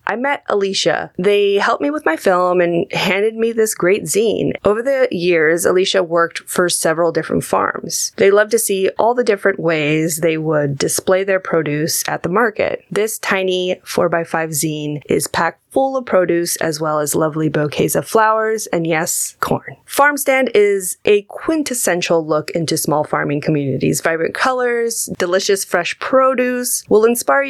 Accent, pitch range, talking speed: American, 160-220 Hz, 165 wpm